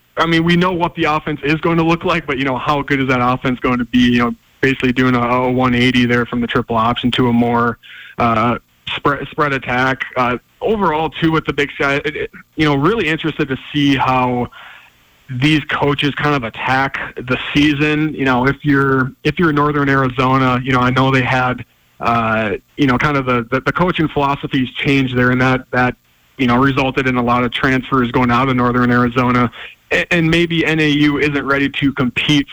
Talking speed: 210 wpm